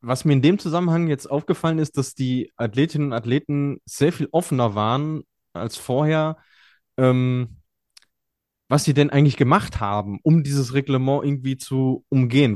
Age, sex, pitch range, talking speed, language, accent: 20-39, male, 125-150 Hz, 155 wpm, German, German